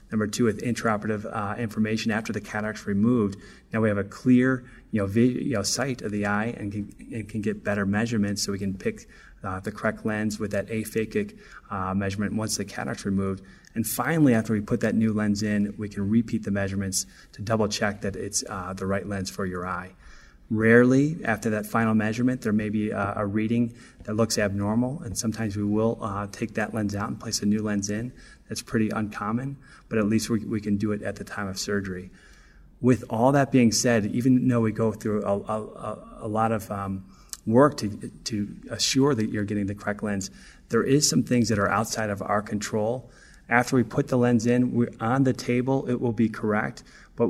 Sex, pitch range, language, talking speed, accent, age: male, 100-115 Hz, English, 215 wpm, American, 30-49